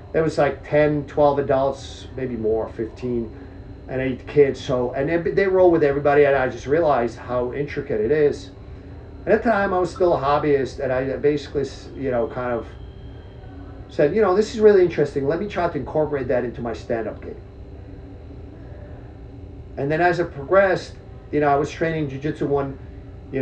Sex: male